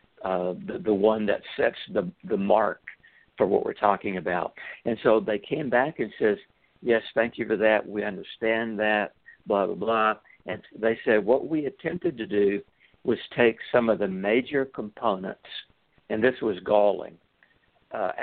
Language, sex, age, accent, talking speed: English, male, 60-79, American, 170 wpm